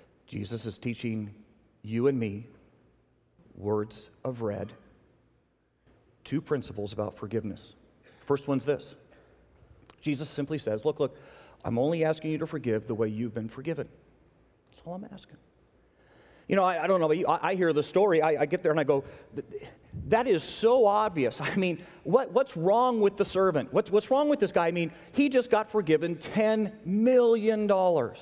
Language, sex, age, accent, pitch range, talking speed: English, male, 40-59, American, 145-215 Hz, 170 wpm